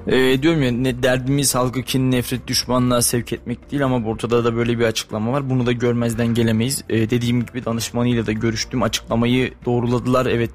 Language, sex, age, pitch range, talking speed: Turkish, male, 20-39, 120-145 Hz, 180 wpm